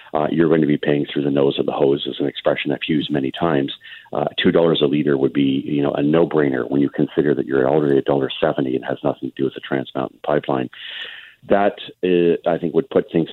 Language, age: English, 50-69